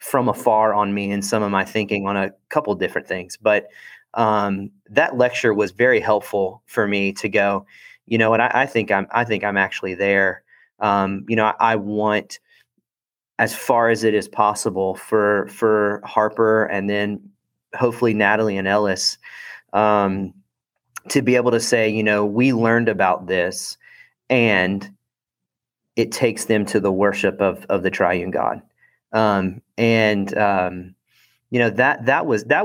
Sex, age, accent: male, 30-49, American